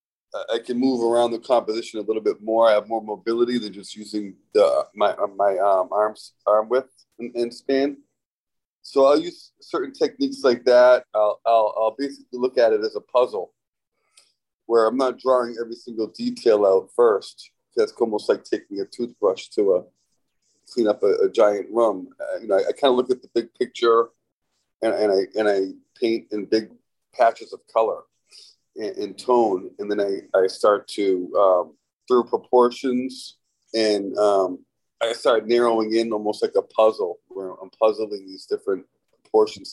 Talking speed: 175 wpm